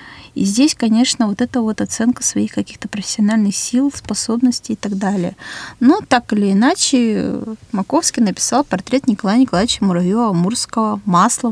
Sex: female